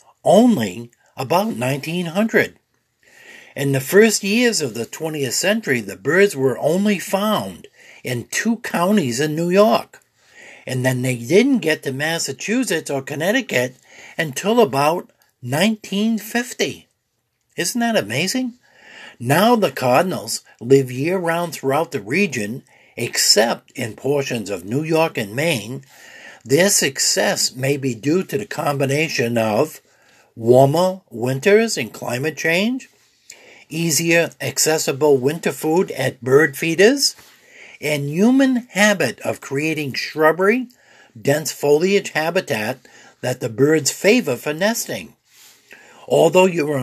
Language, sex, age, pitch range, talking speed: English, male, 60-79, 135-205 Hz, 120 wpm